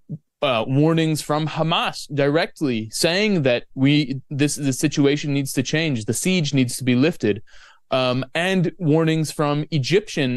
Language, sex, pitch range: English, male, 130-160 Hz